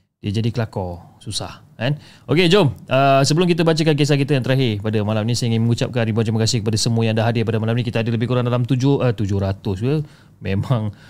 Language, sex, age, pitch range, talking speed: Malay, male, 30-49, 105-130 Hz, 210 wpm